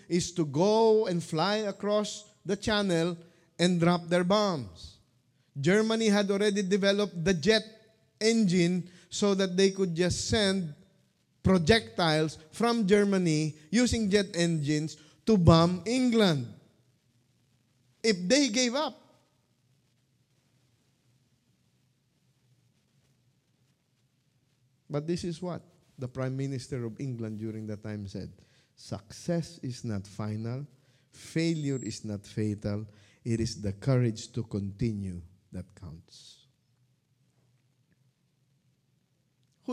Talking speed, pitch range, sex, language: 105 wpm, 125-180 Hz, male, English